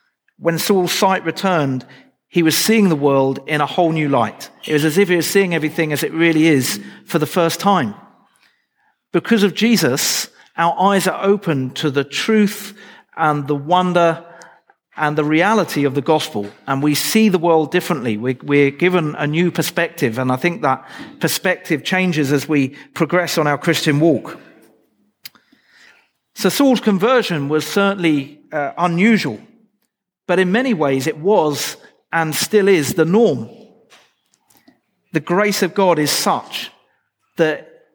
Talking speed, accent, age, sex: 155 wpm, British, 50-69, male